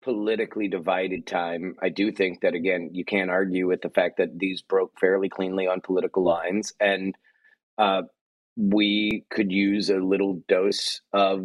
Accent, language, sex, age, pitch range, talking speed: American, English, male, 30-49, 95-110 Hz, 160 wpm